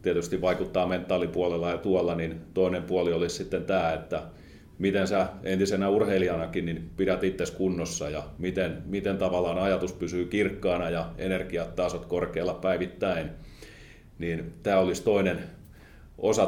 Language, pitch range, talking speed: Finnish, 80-100 Hz, 130 wpm